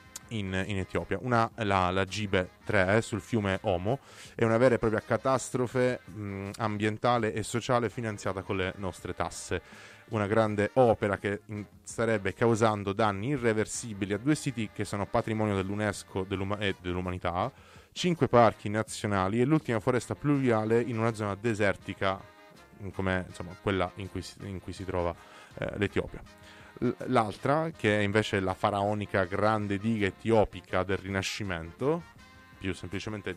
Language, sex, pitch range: Italian, male, 95-115 Hz